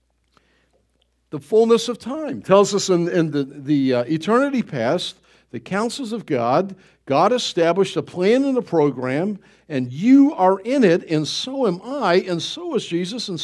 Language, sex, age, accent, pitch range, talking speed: English, male, 50-69, American, 150-220 Hz, 170 wpm